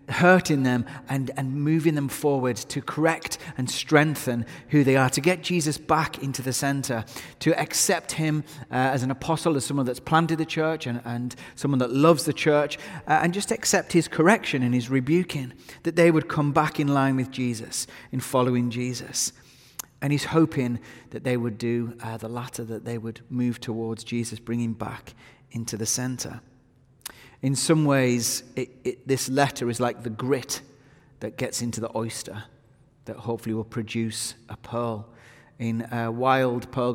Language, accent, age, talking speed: English, British, 30-49, 170 wpm